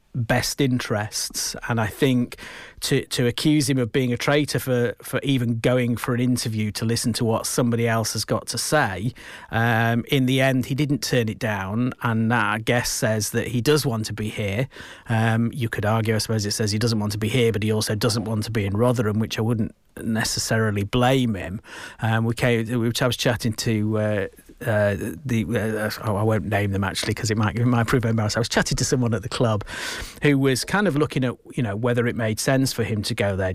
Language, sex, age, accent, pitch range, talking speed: English, male, 40-59, British, 110-125 Hz, 230 wpm